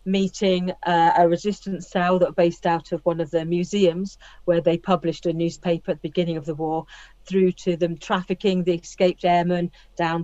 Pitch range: 165-185 Hz